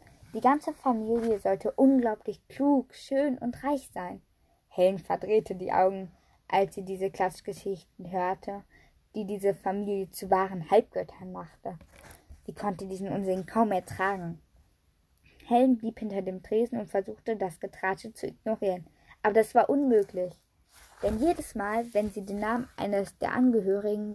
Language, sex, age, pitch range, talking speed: German, female, 10-29, 185-230 Hz, 140 wpm